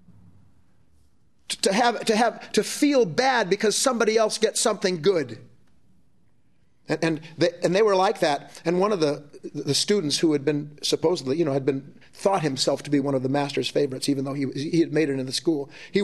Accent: American